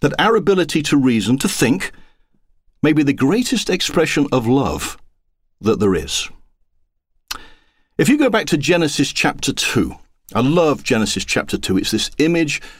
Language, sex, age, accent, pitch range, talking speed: English, male, 40-59, British, 110-165 Hz, 155 wpm